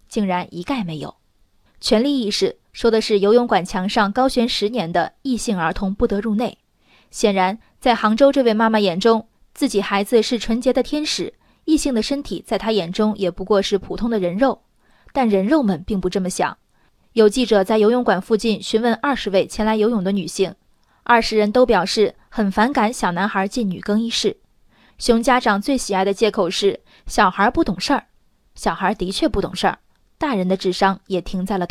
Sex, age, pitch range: female, 20-39, 195-240 Hz